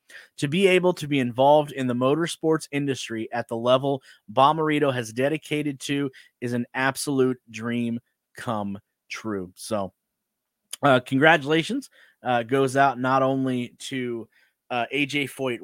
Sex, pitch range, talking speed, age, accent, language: male, 115-140 Hz, 135 wpm, 30-49, American, English